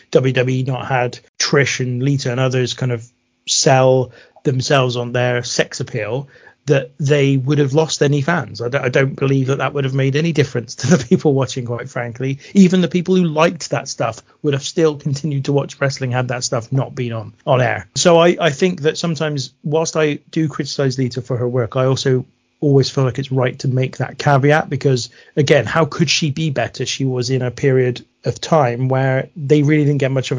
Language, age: English, 30-49